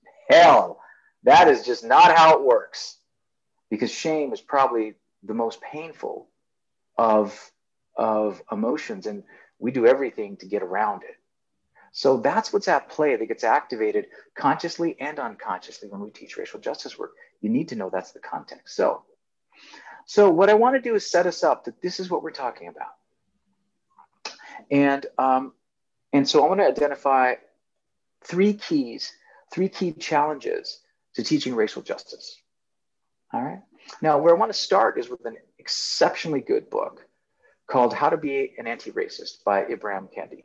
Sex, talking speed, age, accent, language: male, 160 wpm, 40-59, American, English